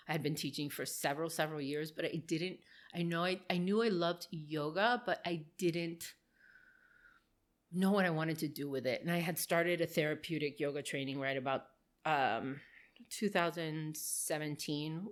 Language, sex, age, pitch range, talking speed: English, female, 30-49, 155-195 Hz, 165 wpm